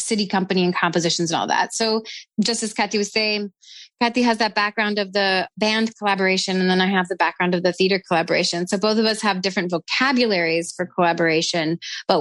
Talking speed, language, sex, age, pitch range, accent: 200 wpm, English, female, 30-49, 185-230 Hz, American